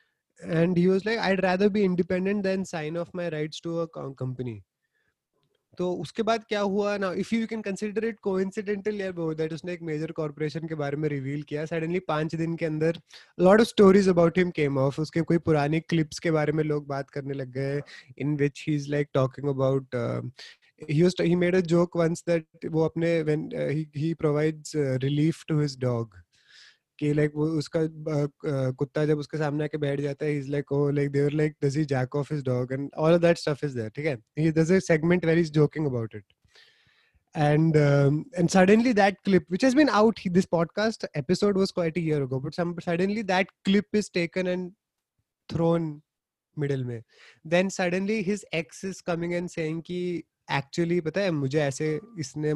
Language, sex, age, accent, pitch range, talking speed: Hindi, male, 20-39, native, 145-180 Hz, 100 wpm